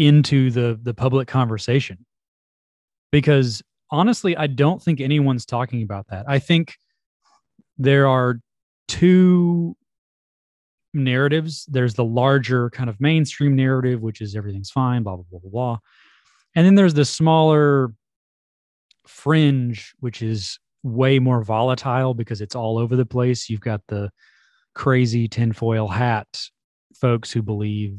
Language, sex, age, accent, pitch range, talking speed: English, male, 20-39, American, 110-135 Hz, 135 wpm